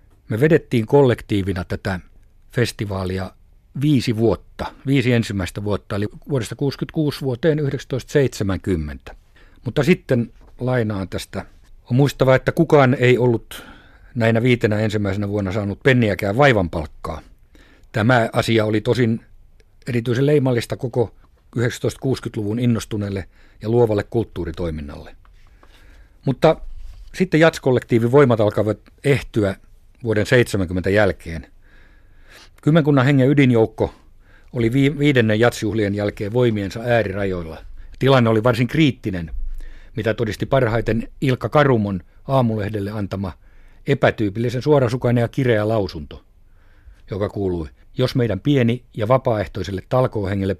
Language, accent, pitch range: Finnish, native, 95-125 Hz